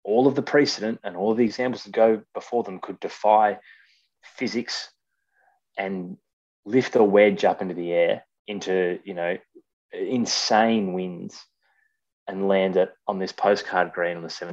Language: English